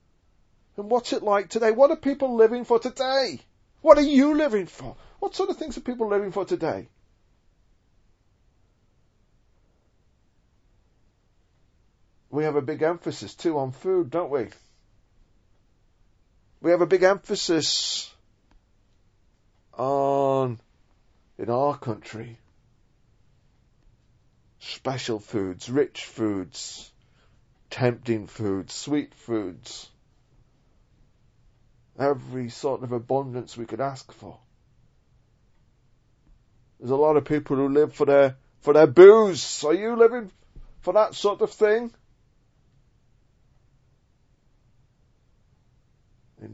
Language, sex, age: English, male, 40-59